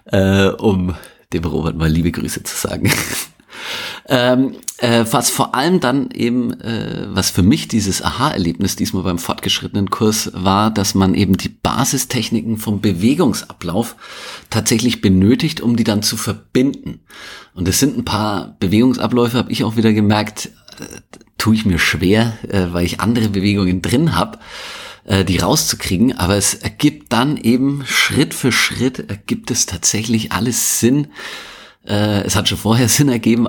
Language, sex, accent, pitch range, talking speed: German, male, German, 95-120 Hz, 150 wpm